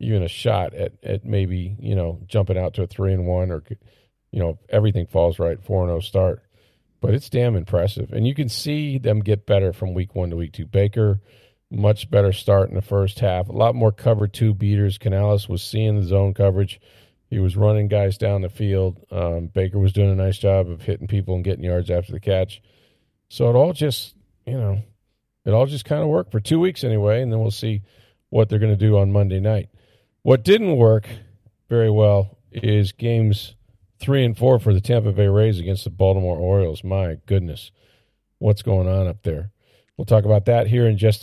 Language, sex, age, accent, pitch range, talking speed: English, male, 40-59, American, 100-115 Hz, 210 wpm